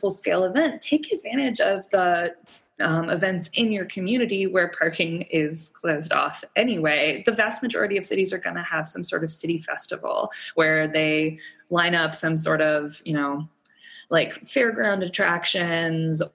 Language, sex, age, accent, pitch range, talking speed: English, female, 20-39, American, 165-220 Hz, 160 wpm